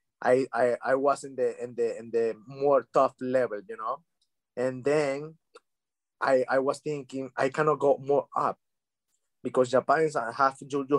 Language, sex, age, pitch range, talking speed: English, male, 20-39, 125-155 Hz, 175 wpm